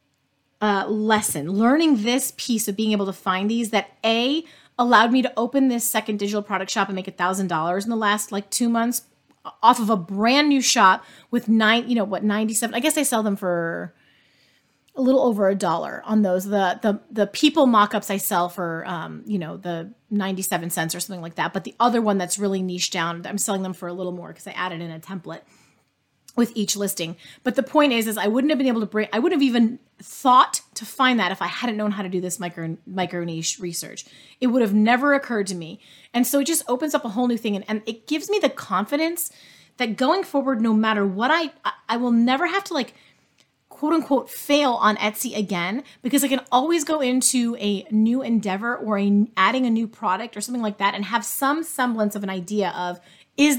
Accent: American